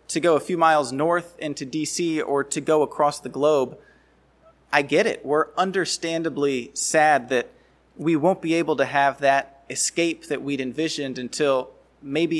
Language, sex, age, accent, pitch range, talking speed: English, male, 30-49, American, 140-170 Hz, 165 wpm